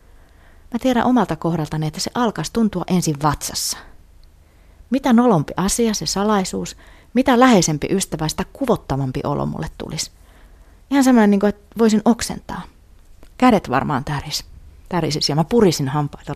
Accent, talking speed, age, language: native, 140 wpm, 30-49, Finnish